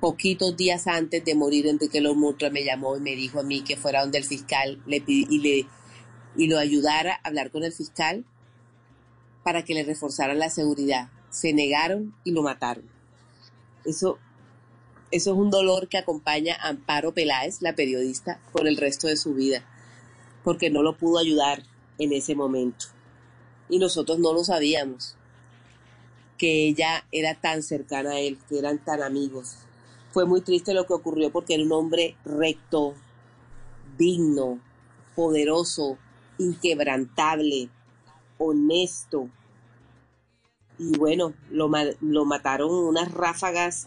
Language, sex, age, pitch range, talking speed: Spanish, female, 30-49, 120-160 Hz, 150 wpm